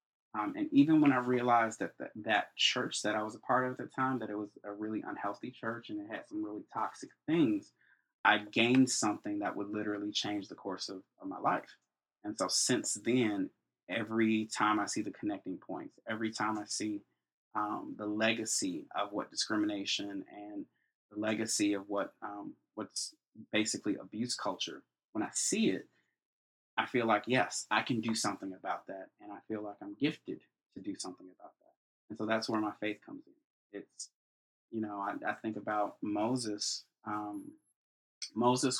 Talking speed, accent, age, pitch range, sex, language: 180 wpm, American, 20-39, 105-130 Hz, male, English